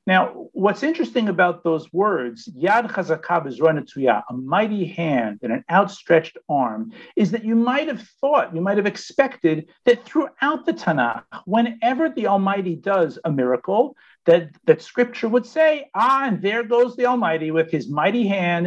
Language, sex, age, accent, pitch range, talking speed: English, male, 50-69, American, 170-240 Hz, 170 wpm